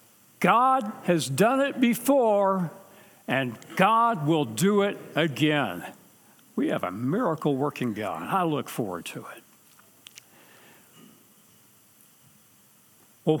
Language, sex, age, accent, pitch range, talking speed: English, male, 60-79, American, 155-225 Hz, 105 wpm